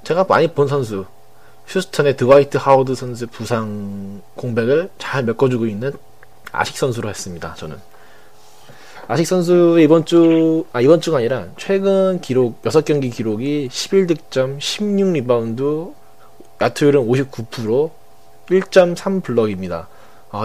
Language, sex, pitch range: Korean, male, 110-160 Hz